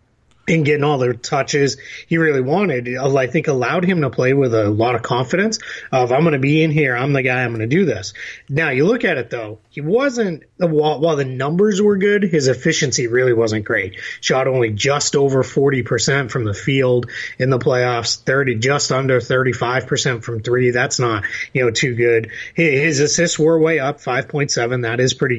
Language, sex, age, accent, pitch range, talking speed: English, male, 30-49, American, 120-150 Hz, 200 wpm